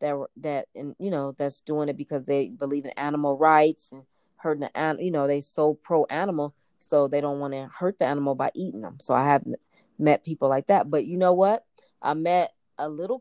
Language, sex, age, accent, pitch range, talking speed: English, female, 30-49, American, 145-170 Hz, 225 wpm